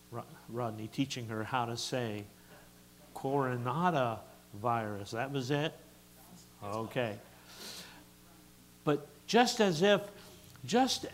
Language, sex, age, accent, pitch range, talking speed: English, male, 60-79, American, 110-155 Hz, 90 wpm